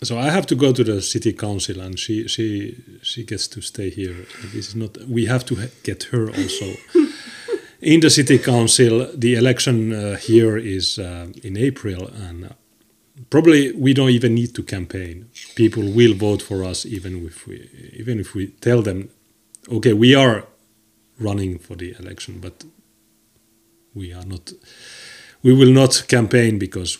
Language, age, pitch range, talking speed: English, 30-49, 95-120 Hz, 165 wpm